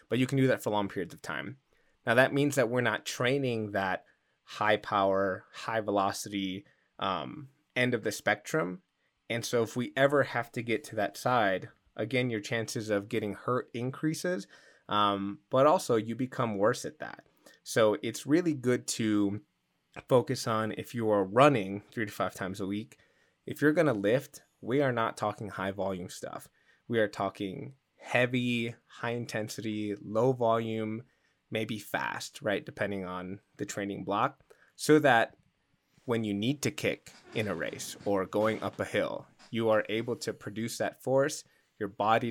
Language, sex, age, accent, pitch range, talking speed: English, male, 20-39, American, 105-130 Hz, 175 wpm